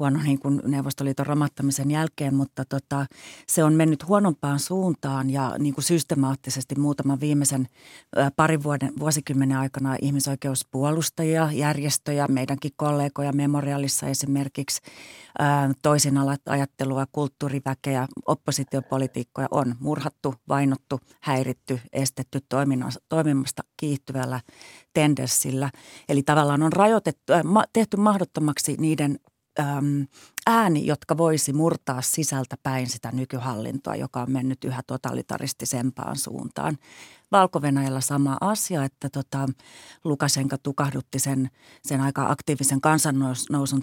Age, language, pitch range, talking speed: 30-49, Finnish, 135-150 Hz, 105 wpm